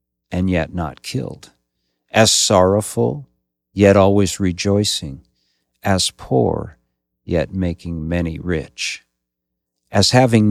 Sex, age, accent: male, 50-69, American